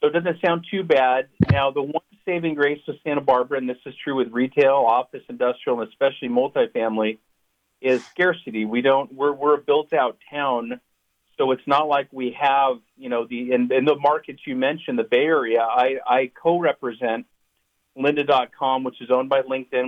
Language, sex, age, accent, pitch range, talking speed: English, male, 40-59, American, 125-150 Hz, 190 wpm